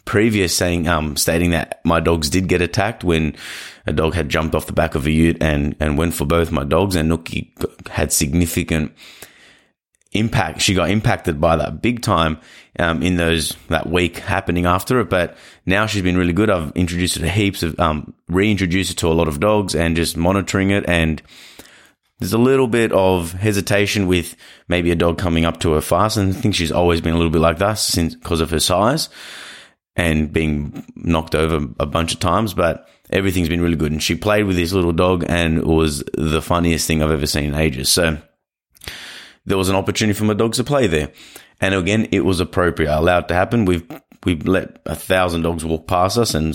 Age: 30-49